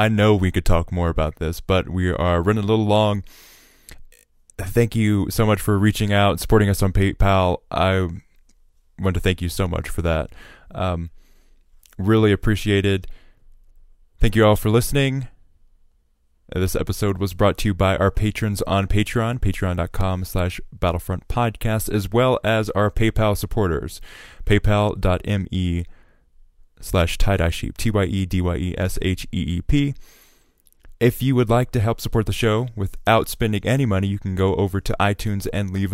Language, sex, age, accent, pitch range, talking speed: English, male, 20-39, American, 90-110 Hz, 165 wpm